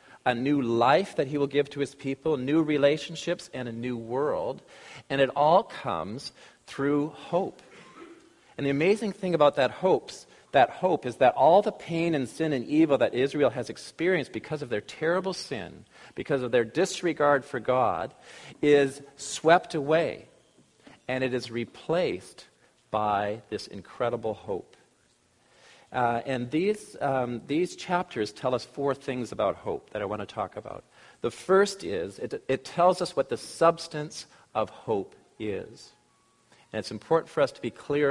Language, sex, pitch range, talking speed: English, male, 125-165 Hz, 165 wpm